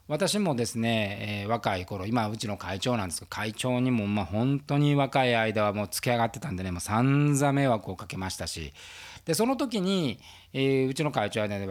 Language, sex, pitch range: Japanese, male, 95-130 Hz